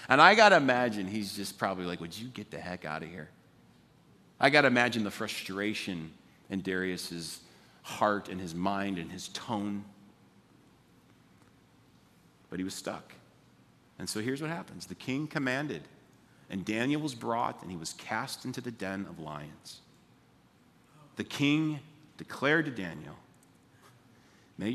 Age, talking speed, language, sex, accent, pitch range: 40-59, 155 wpm, English, male, American, 95-140 Hz